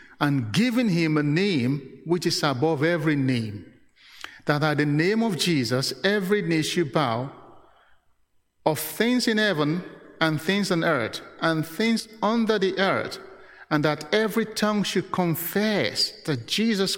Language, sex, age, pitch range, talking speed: English, male, 50-69, 135-195 Hz, 145 wpm